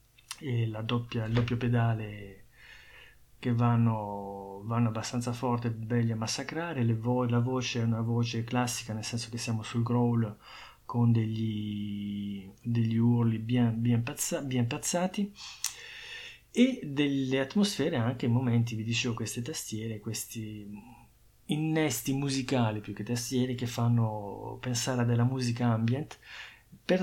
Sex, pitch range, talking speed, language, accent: male, 115-130 Hz, 135 wpm, Italian, native